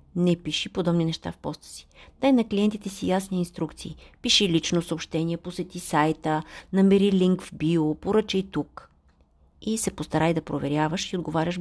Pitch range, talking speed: 160-200 Hz, 160 wpm